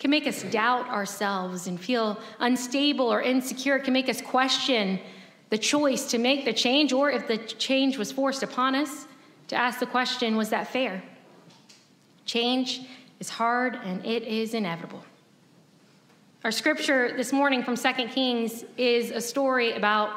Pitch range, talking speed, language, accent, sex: 220-270 Hz, 160 wpm, English, American, female